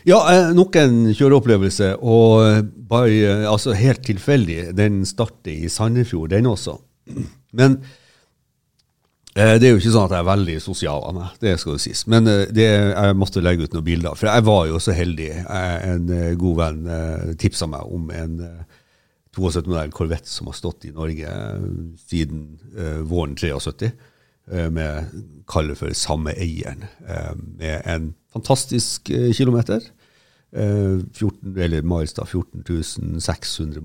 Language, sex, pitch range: English, male, 80-110 Hz